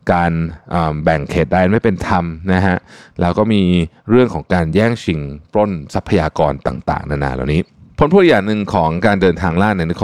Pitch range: 75-100 Hz